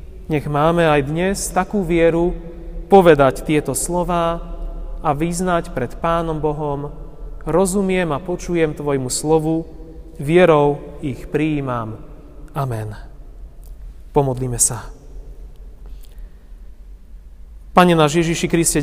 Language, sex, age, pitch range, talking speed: Slovak, male, 30-49, 145-165 Hz, 90 wpm